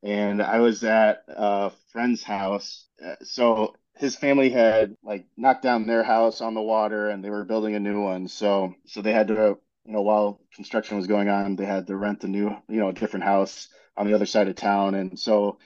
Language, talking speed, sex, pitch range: English, 220 wpm, male, 100-110 Hz